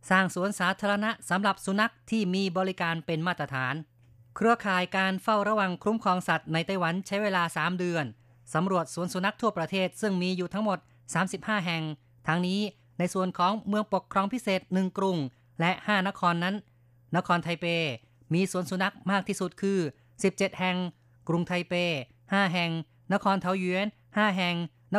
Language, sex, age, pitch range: Thai, female, 20-39, 160-195 Hz